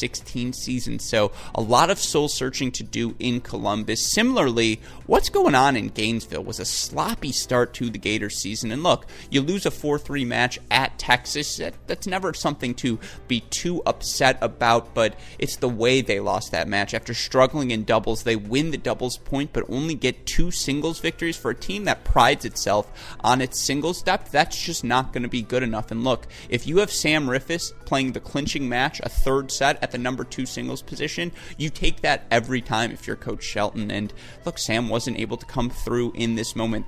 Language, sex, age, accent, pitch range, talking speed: English, male, 30-49, American, 110-130 Hz, 200 wpm